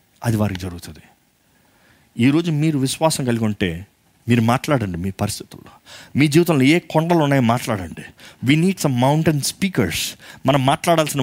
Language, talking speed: Telugu, 135 wpm